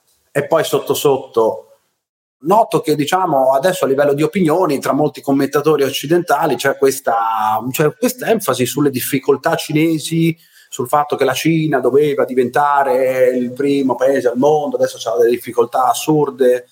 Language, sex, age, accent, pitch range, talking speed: Italian, male, 30-49, native, 125-165 Hz, 140 wpm